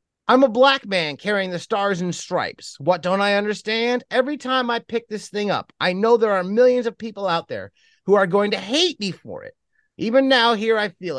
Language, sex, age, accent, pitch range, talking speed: English, male, 30-49, American, 175-240 Hz, 225 wpm